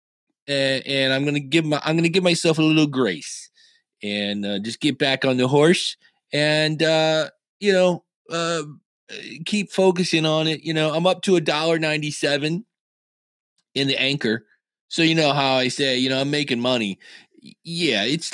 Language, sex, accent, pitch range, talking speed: English, male, American, 125-170 Hz, 180 wpm